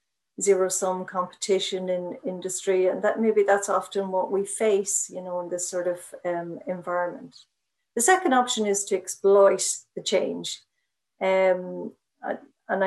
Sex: female